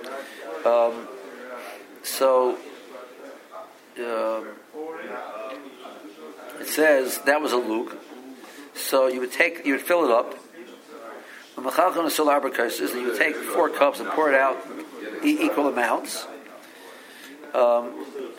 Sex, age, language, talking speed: male, 60-79, English, 100 wpm